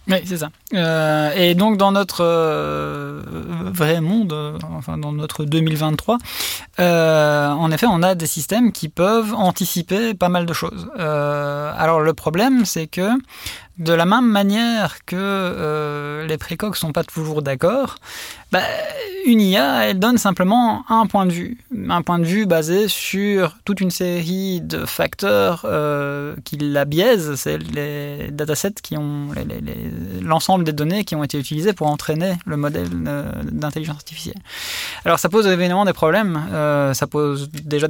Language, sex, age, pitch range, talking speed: French, male, 20-39, 145-185 Hz, 170 wpm